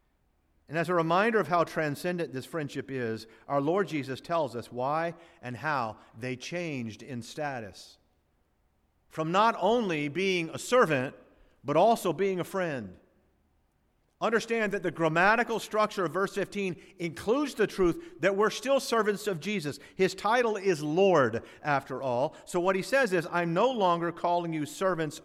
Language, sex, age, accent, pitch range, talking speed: English, male, 50-69, American, 110-185 Hz, 160 wpm